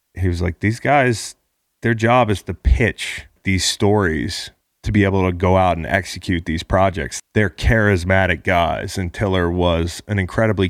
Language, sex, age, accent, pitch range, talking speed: English, male, 30-49, American, 90-100 Hz, 170 wpm